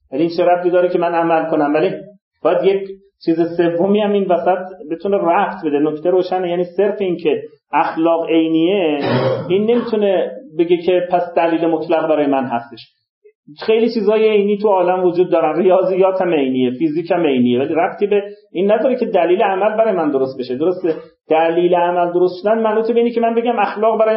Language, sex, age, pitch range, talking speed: Persian, male, 40-59, 165-200 Hz, 185 wpm